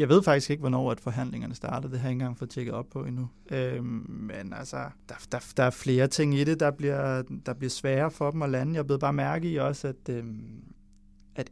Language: English